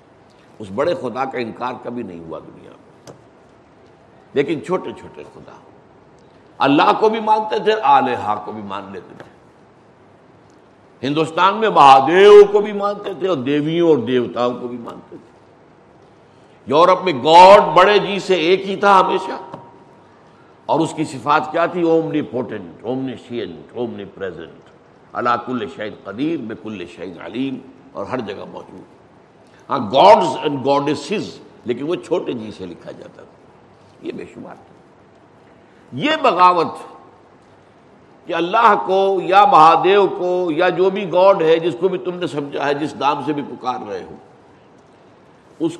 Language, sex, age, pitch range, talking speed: Urdu, male, 60-79, 135-195 Hz, 150 wpm